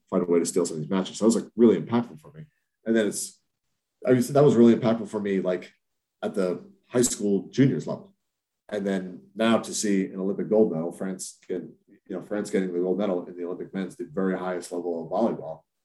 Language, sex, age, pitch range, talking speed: English, male, 40-59, 85-105 Hz, 235 wpm